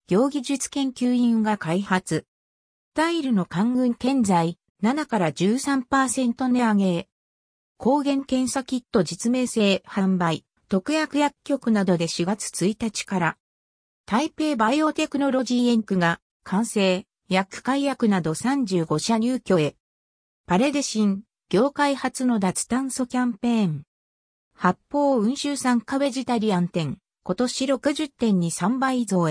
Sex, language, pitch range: female, Japanese, 175-260 Hz